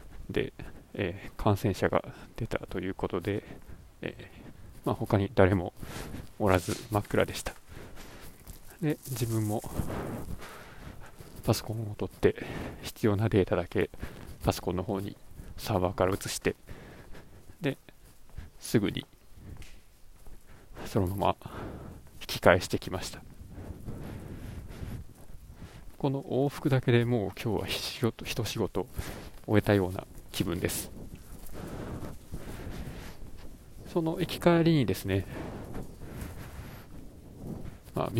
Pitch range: 95-115 Hz